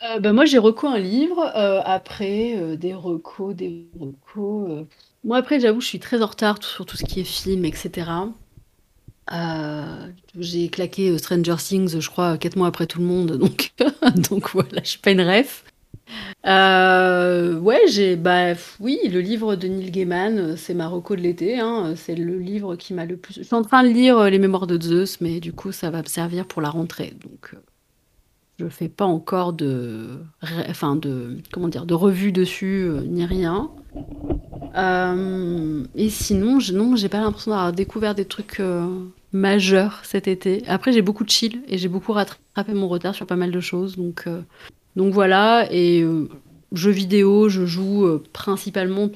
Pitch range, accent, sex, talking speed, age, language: 170-205 Hz, French, female, 190 wpm, 30-49, French